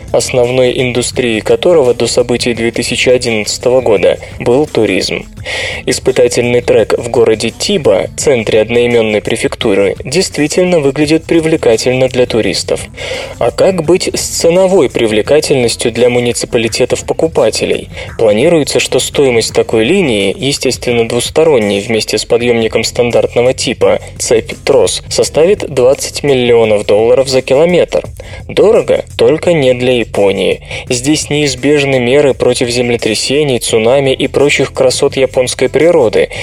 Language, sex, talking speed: Russian, male, 105 wpm